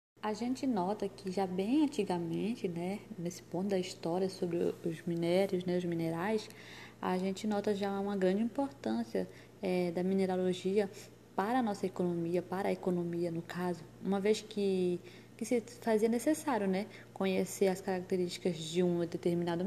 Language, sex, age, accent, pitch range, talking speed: Portuguese, female, 20-39, Brazilian, 180-215 Hz, 155 wpm